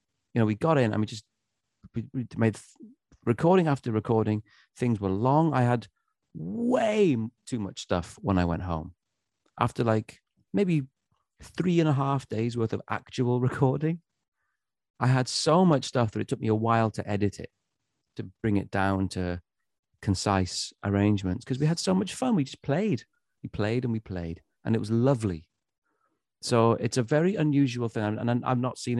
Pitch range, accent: 100-130 Hz, British